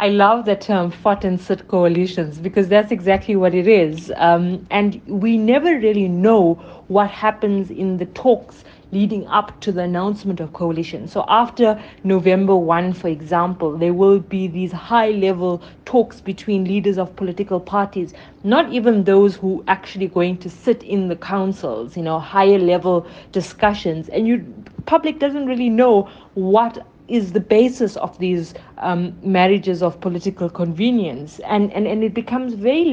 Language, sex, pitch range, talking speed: English, female, 175-210 Hz, 160 wpm